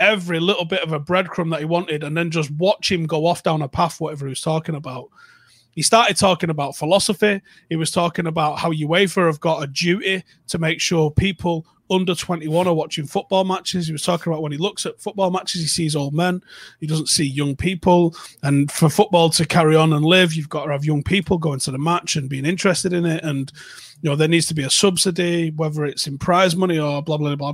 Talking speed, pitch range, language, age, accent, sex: 235 wpm, 150-195 Hz, English, 30-49, British, male